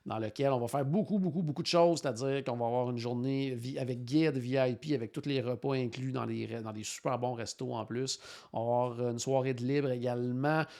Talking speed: 230 wpm